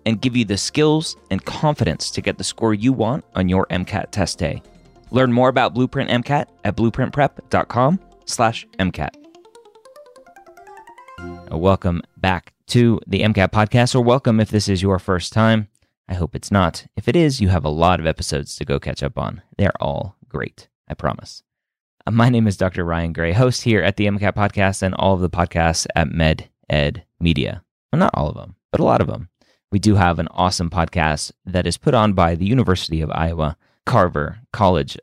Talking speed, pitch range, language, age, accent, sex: 190 wpm, 80-115 Hz, English, 30-49, American, male